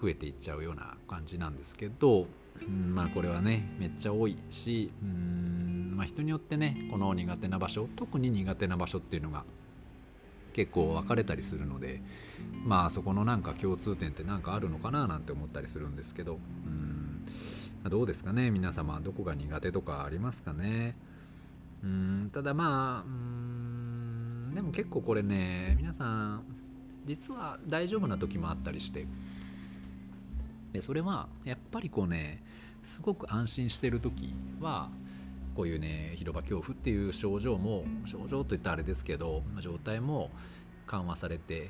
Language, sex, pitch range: Japanese, male, 80-115 Hz